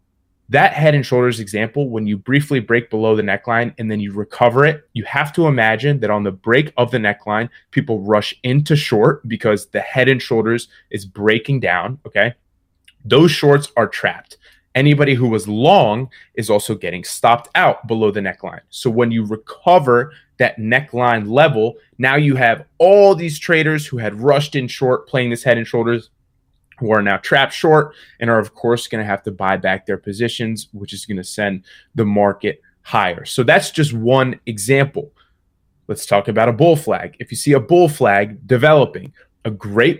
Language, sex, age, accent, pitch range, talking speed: English, male, 20-39, American, 105-135 Hz, 190 wpm